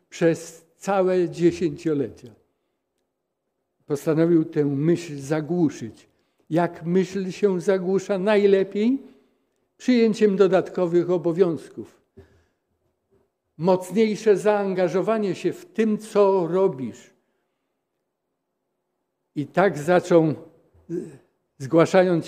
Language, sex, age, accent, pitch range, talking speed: Polish, male, 60-79, native, 150-195 Hz, 70 wpm